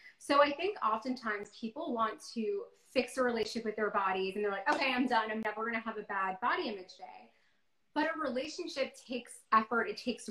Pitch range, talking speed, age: 205-255 Hz, 205 wpm, 20-39